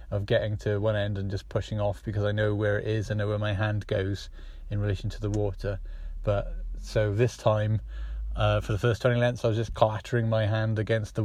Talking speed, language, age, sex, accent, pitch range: 235 wpm, English, 30-49, male, British, 105-120 Hz